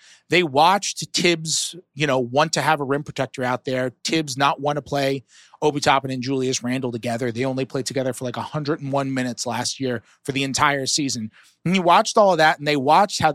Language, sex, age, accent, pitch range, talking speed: English, male, 30-49, American, 140-170 Hz, 215 wpm